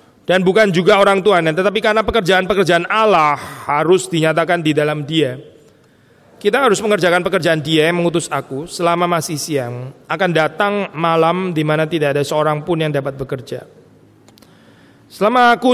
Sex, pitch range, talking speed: male, 145-185 Hz, 145 wpm